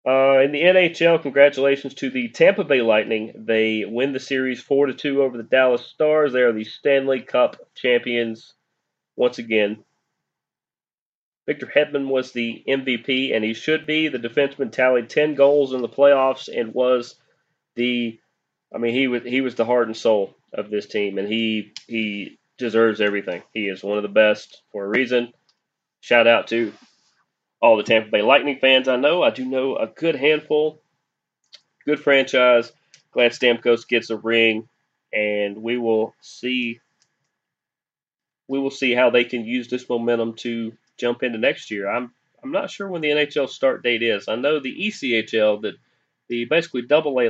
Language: English